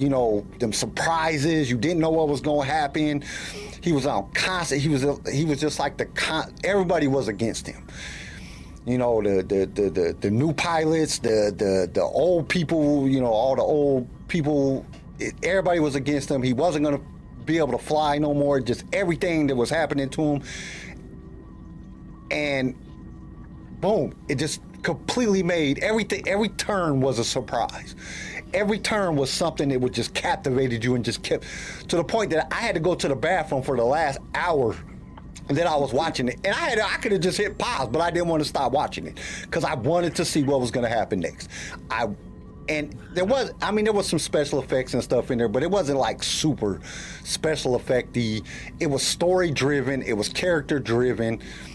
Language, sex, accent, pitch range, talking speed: English, male, American, 125-165 Hz, 200 wpm